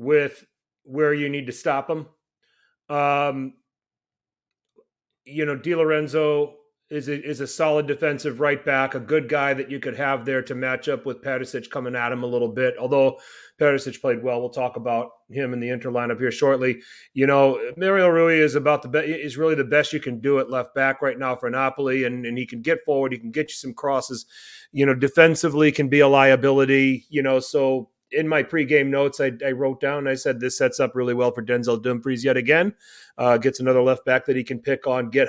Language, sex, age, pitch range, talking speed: English, male, 30-49, 125-145 Hz, 220 wpm